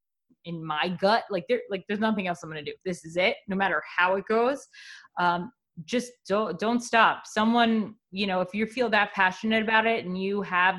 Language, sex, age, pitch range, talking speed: English, female, 20-39, 180-215 Hz, 210 wpm